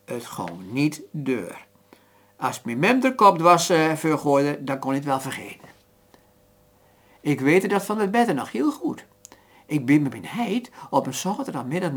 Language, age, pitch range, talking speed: Dutch, 60-79, 125-180 Hz, 165 wpm